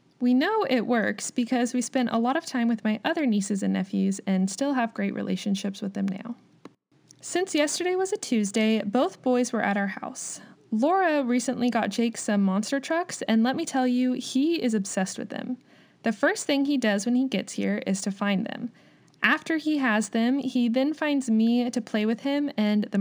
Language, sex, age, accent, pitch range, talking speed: English, female, 20-39, American, 215-275 Hz, 210 wpm